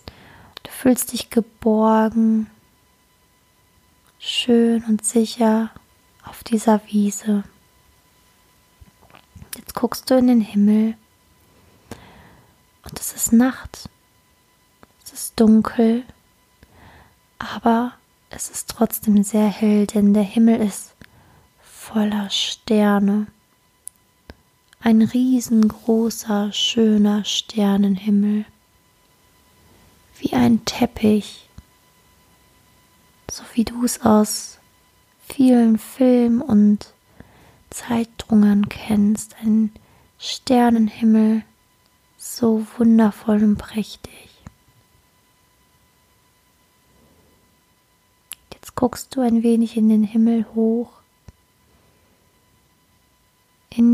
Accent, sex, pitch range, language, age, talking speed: German, female, 210-230 Hz, German, 20-39, 75 wpm